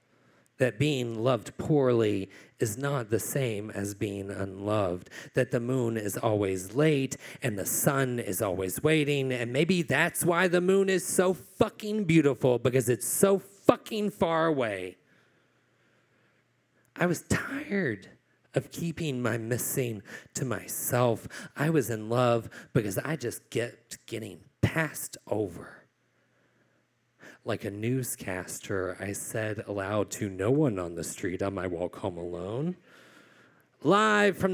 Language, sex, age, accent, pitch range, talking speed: English, male, 40-59, American, 110-175 Hz, 135 wpm